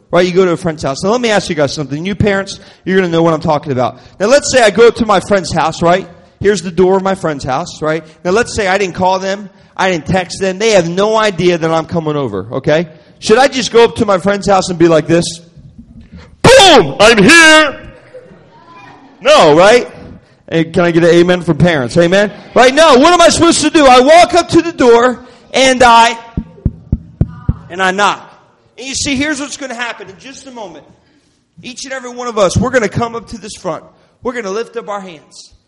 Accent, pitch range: American, 175-245 Hz